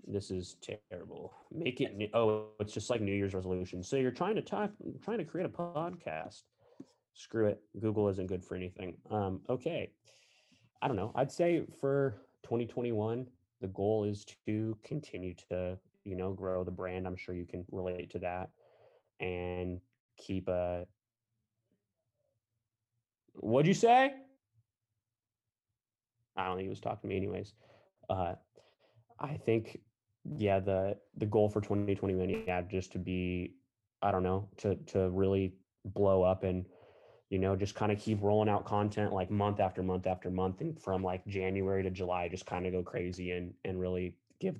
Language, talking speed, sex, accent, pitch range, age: English, 170 wpm, male, American, 90-110 Hz, 20-39